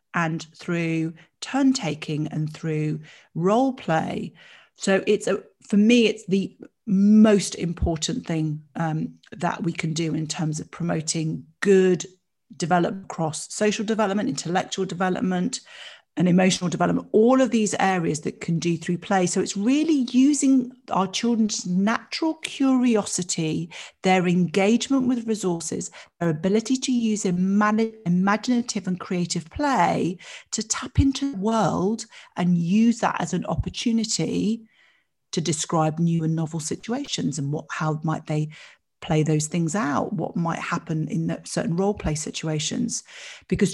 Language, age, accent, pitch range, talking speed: English, 40-59, British, 170-225 Hz, 135 wpm